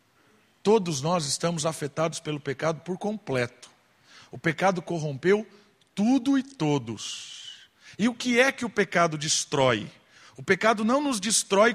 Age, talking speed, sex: 50-69, 140 wpm, male